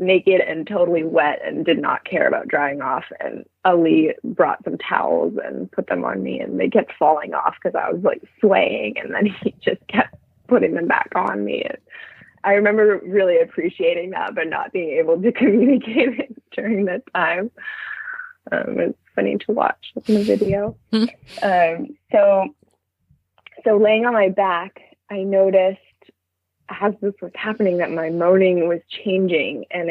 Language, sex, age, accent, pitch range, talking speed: English, female, 20-39, American, 175-220 Hz, 170 wpm